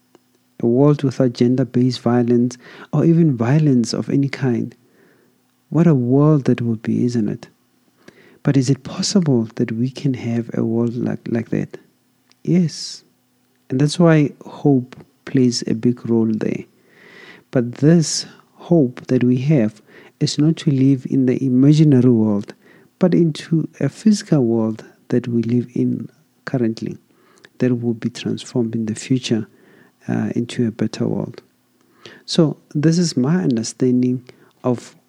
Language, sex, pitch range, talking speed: English, male, 120-140 Hz, 145 wpm